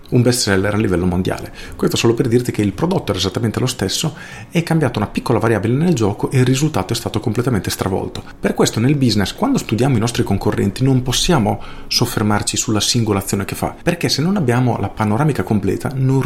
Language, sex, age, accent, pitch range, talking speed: Italian, male, 40-59, native, 100-130 Hz, 205 wpm